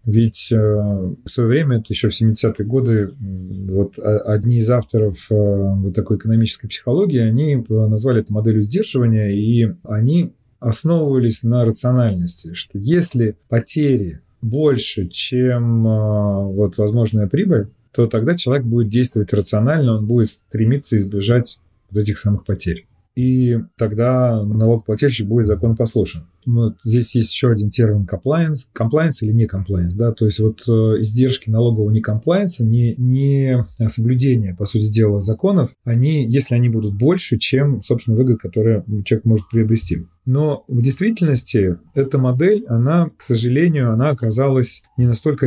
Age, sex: 30-49, male